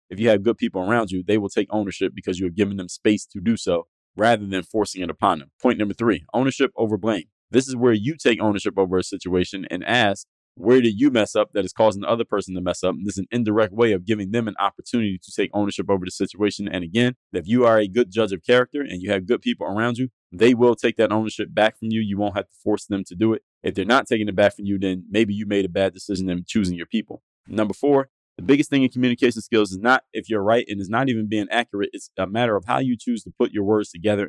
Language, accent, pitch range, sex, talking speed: English, American, 100-120 Hz, male, 275 wpm